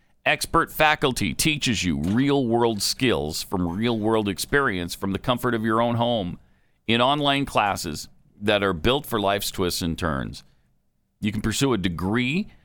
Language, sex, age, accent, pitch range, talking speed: English, male, 50-69, American, 100-150 Hz, 150 wpm